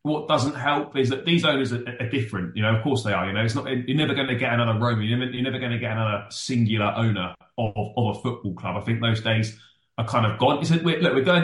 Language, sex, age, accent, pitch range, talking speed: English, male, 20-39, British, 115-140 Hz, 290 wpm